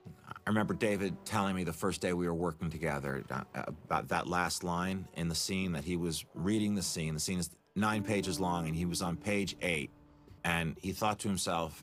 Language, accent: English, American